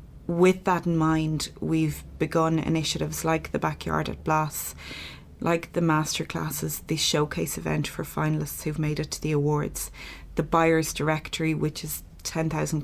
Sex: female